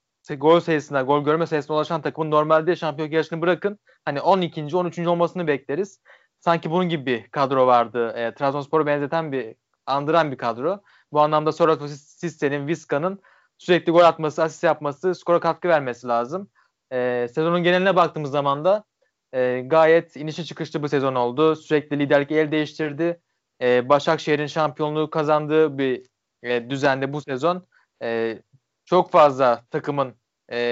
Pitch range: 135-170 Hz